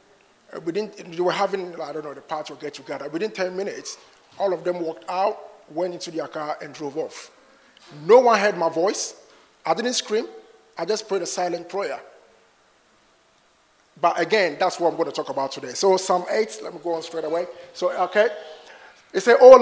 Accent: Nigerian